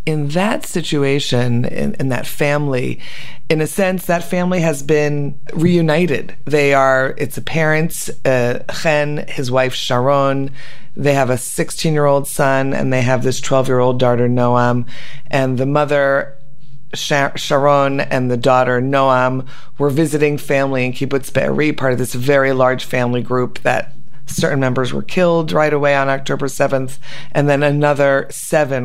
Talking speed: 150 wpm